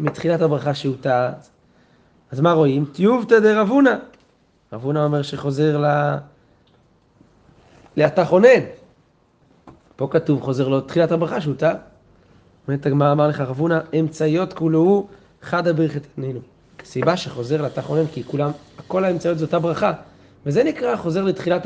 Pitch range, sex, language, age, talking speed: 135-175 Hz, male, Hebrew, 30-49, 135 wpm